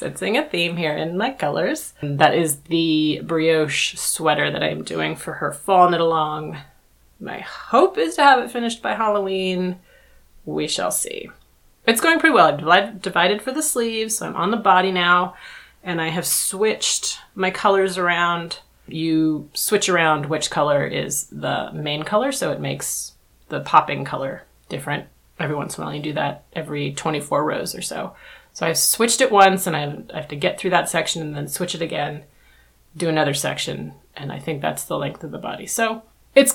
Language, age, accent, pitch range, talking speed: English, 30-49, American, 155-205 Hz, 190 wpm